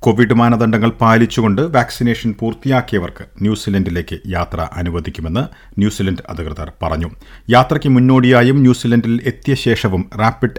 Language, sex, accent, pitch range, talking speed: Malayalam, male, native, 90-115 Hz, 95 wpm